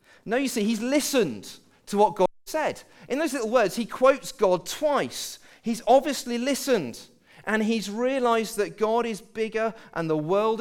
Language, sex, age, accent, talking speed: English, male, 40-59, British, 170 wpm